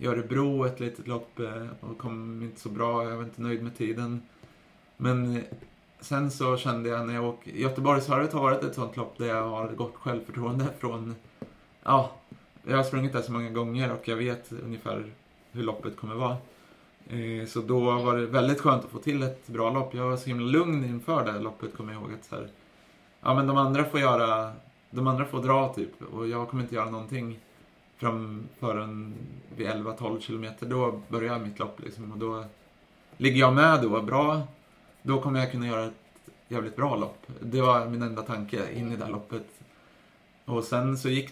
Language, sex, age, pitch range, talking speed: Swedish, male, 30-49, 110-125 Hz, 195 wpm